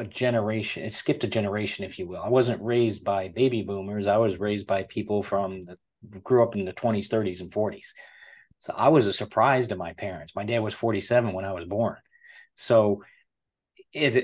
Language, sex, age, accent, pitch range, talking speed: English, male, 40-59, American, 100-120 Hz, 200 wpm